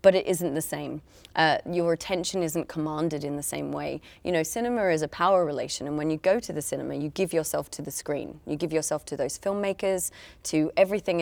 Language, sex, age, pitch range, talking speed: English, female, 20-39, 160-195 Hz, 225 wpm